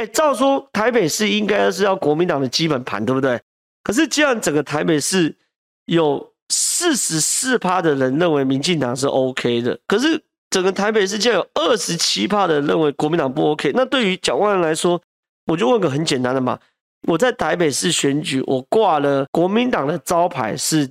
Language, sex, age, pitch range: Chinese, male, 30-49, 135-190 Hz